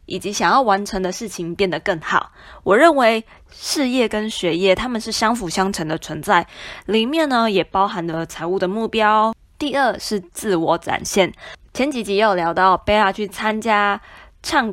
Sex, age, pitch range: female, 20-39, 180-235 Hz